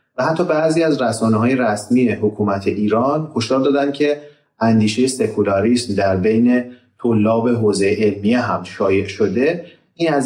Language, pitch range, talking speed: Persian, 105-130 Hz, 140 wpm